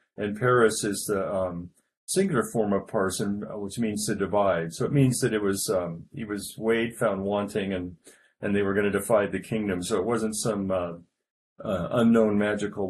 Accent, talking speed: American, 195 wpm